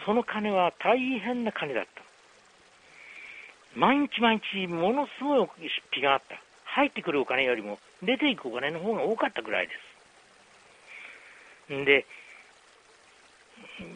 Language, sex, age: Japanese, male, 60-79